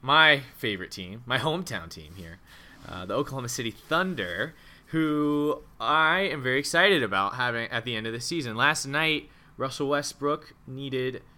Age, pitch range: 20-39, 110-145 Hz